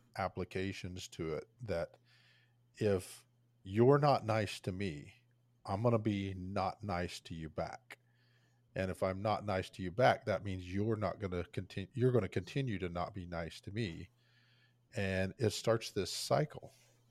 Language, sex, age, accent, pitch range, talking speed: English, male, 40-59, American, 95-120 Hz, 160 wpm